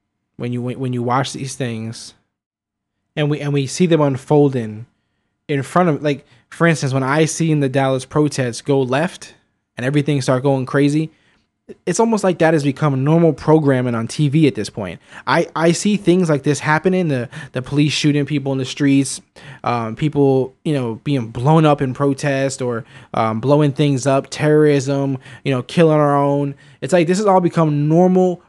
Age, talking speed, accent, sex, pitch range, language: 20-39, 190 wpm, American, male, 135-165 Hz, English